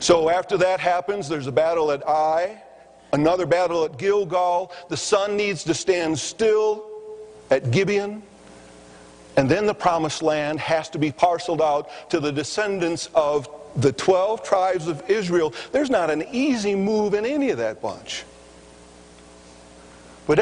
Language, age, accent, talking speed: English, 50-69, American, 150 wpm